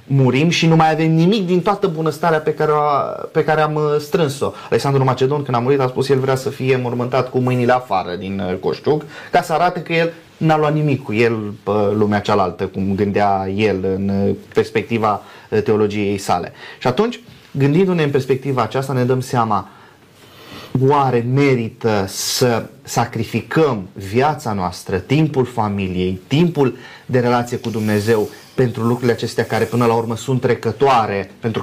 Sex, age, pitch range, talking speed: male, 20-39, 115-145 Hz, 165 wpm